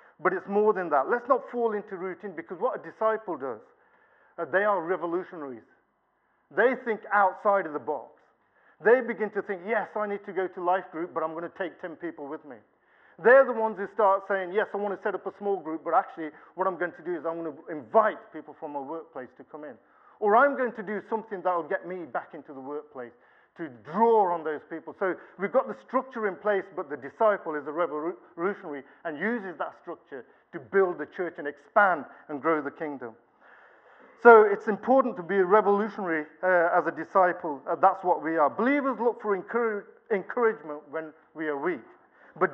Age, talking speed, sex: 50-69, 215 wpm, male